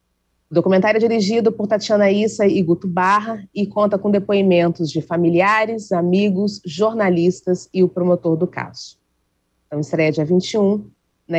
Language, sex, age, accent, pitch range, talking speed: Portuguese, female, 30-49, Brazilian, 155-190 Hz, 140 wpm